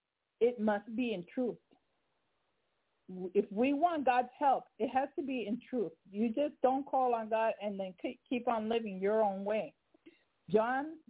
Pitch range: 205-260 Hz